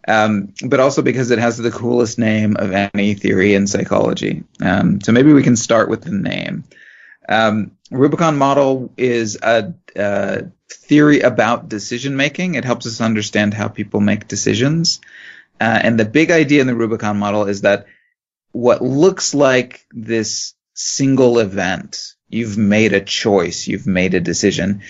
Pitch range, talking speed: 105-135 Hz, 155 wpm